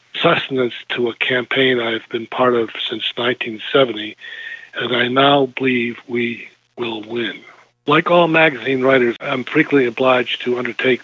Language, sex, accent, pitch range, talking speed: English, male, American, 120-140 Hz, 150 wpm